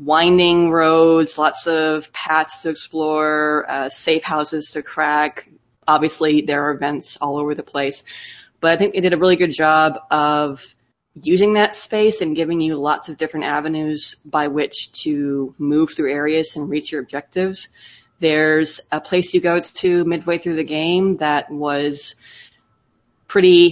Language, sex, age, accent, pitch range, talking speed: English, female, 20-39, American, 150-180 Hz, 160 wpm